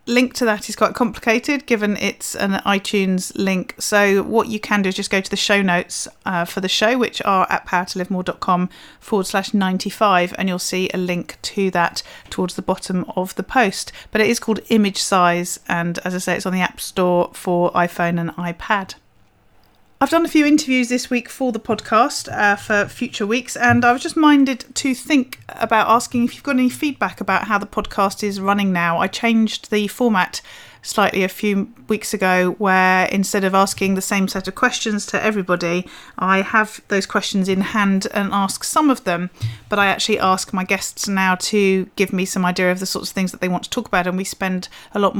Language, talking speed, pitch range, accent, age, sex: English, 210 wpm, 180-215 Hz, British, 40-59, female